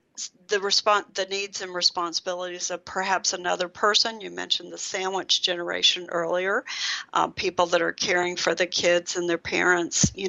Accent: American